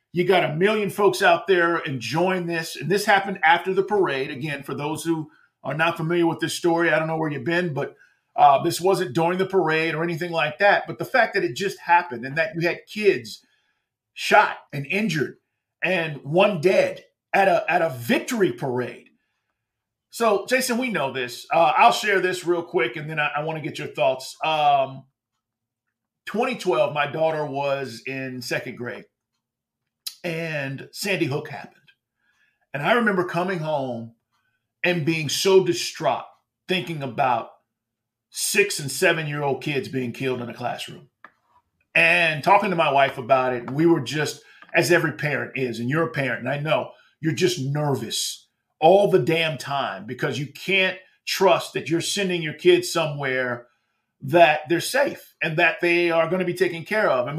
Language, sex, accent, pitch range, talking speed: English, male, American, 135-180 Hz, 180 wpm